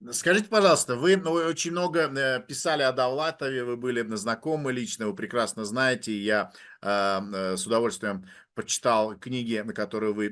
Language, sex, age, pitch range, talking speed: Russian, male, 50-69, 115-150 Hz, 145 wpm